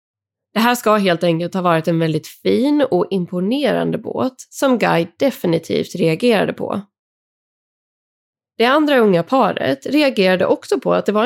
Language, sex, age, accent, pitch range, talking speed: Swedish, female, 20-39, native, 170-250 Hz, 150 wpm